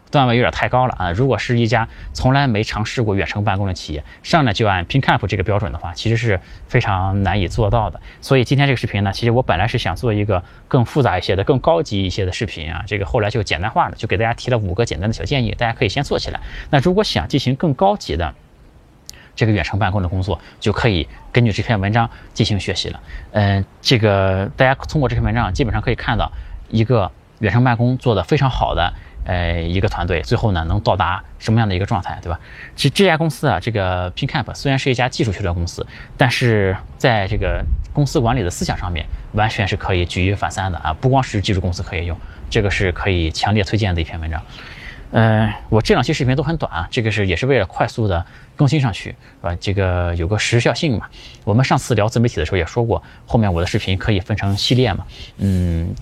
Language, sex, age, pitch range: Chinese, male, 20-39, 95-125 Hz